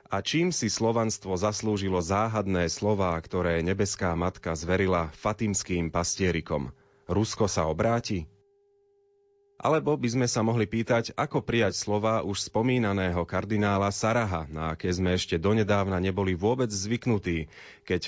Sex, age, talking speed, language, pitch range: male, 30-49, 125 wpm, Slovak, 95-120 Hz